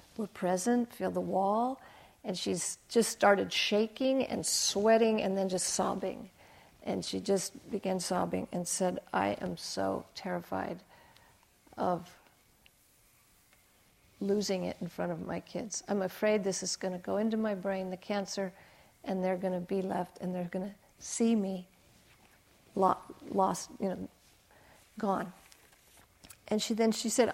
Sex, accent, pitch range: female, American, 190-225 Hz